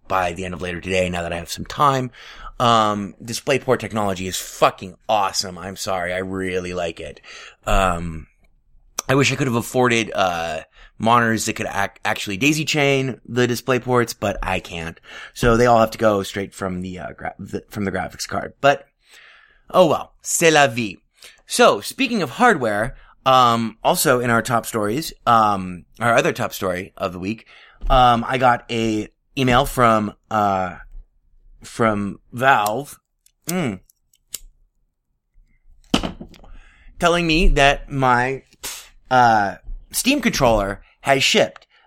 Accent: American